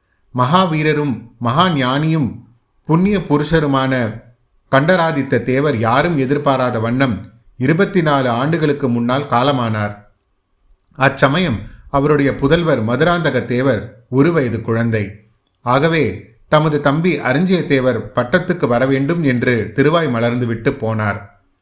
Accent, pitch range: native, 115-145 Hz